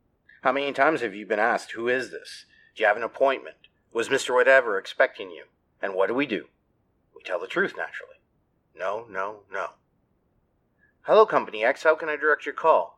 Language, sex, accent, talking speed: English, male, American, 195 wpm